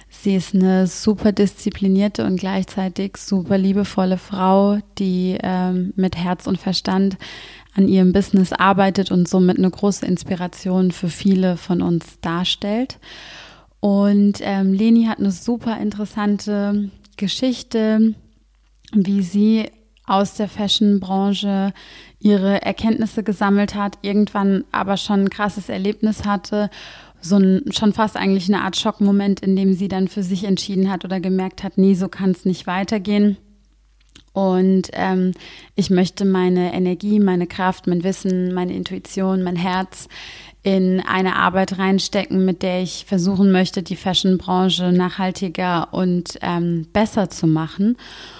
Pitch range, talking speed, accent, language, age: 185-205 Hz, 135 wpm, German, German, 20-39